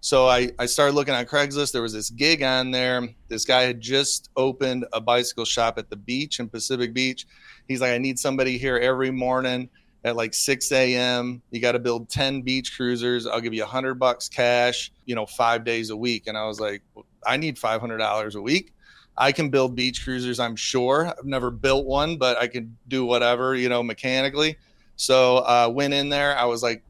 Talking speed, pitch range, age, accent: 215 wpm, 120-130 Hz, 30-49, American